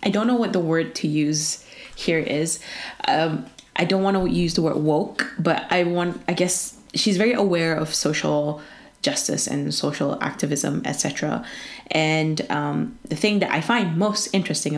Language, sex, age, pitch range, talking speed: English, female, 20-39, 150-195 Hz, 175 wpm